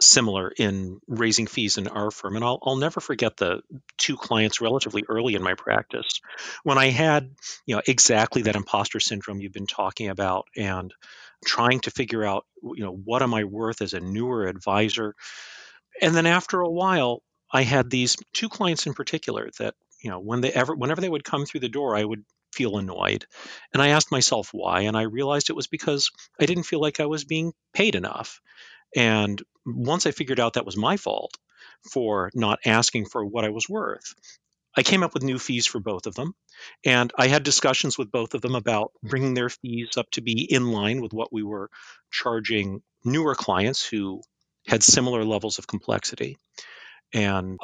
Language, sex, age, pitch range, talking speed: English, male, 40-59, 105-135 Hz, 195 wpm